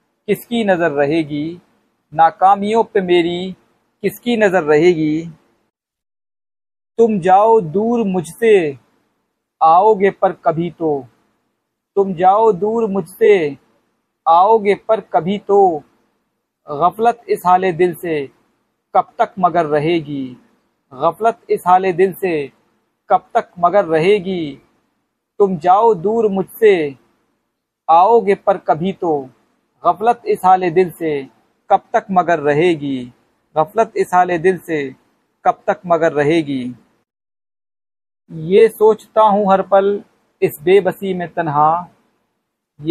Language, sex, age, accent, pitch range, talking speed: Hindi, male, 50-69, native, 155-200 Hz, 105 wpm